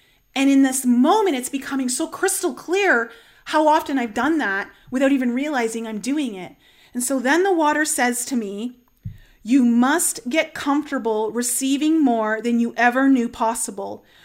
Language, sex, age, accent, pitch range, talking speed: English, female, 30-49, American, 225-310 Hz, 165 wpm